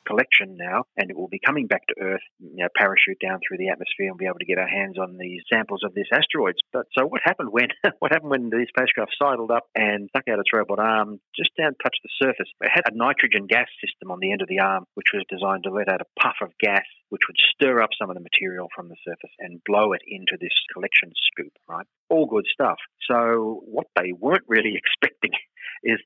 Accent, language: Australian, English